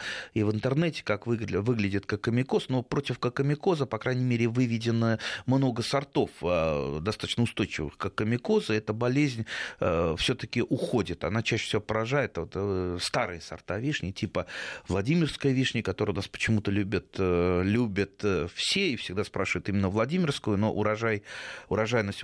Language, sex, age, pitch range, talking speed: Russian, male, 30-49, 100-125 Hz, 145 wpm